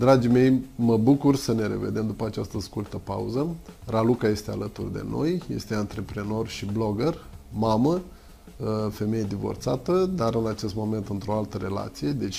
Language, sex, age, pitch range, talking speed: Romanian, male, 20-39, 105-130 Hz, 150 wpm